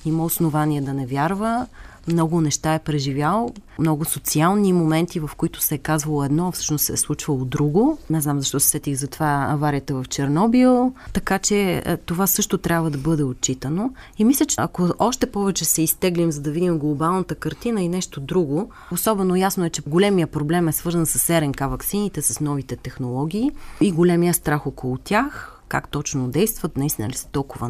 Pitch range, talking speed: 150-195 Hz, 180 wpm